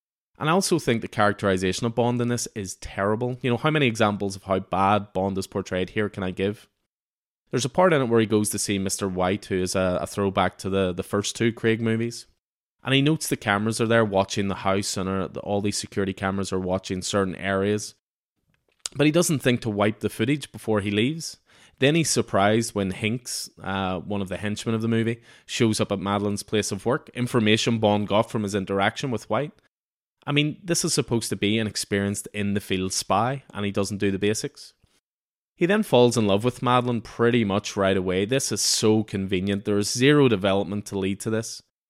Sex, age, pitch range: male, 20-39, 100-120 Hz